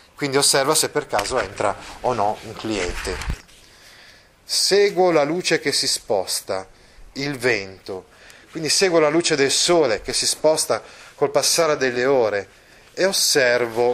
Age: 30-49